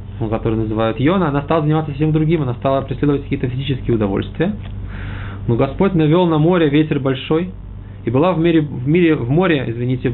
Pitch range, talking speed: 100-145 Hz, 165 wpm